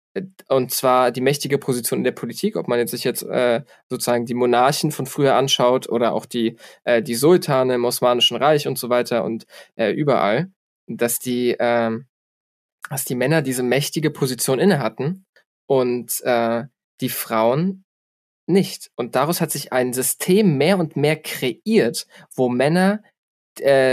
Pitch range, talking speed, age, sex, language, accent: 125-145 Hz, 155 wpm, 20-39, male, German, German